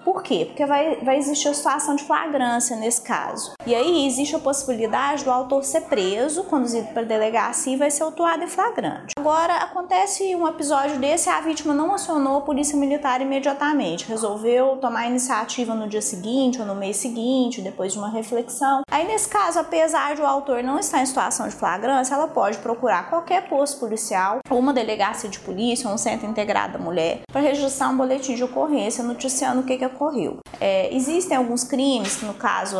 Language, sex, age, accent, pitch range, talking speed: Portuguese, female, 20-39, Brazilian, 235-300 Hz, 200 wpm